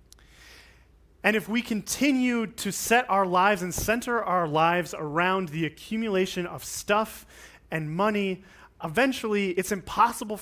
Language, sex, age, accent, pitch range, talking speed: English, male, 30-49, American, 165-210 Hz, 125 wpm